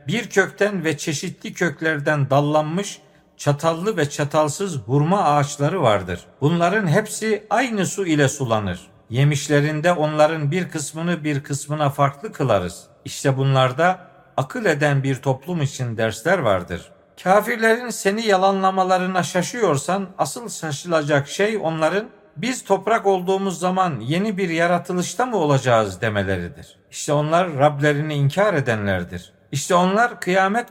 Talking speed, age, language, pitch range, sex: 120 wpm, 50-69, Turkish, 140-190 Hz, male